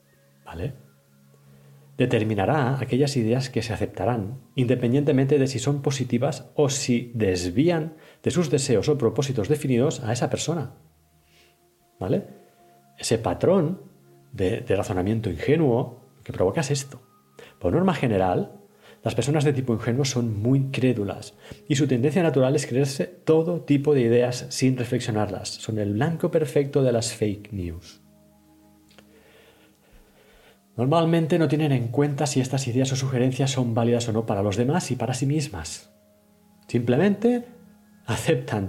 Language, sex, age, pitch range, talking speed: Spanish, male, 40-59, 105-150 Hz, 140 wpm